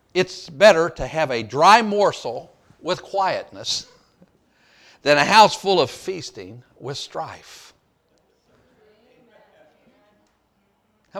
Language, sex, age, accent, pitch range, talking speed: English, male, 50-69, American, 175-235 Hz, 95 wpm